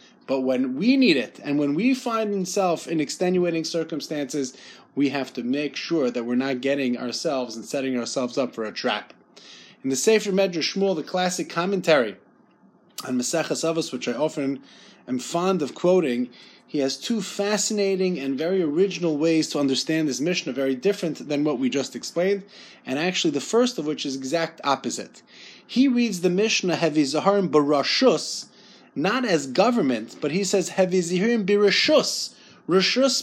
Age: 30-49